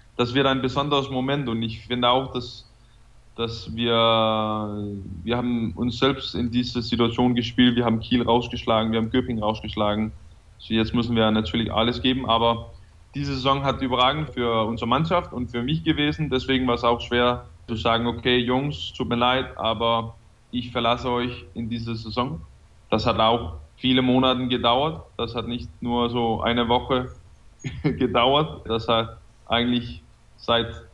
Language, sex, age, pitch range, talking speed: German, male, 20-39, 115-125 Hz, 160 wpm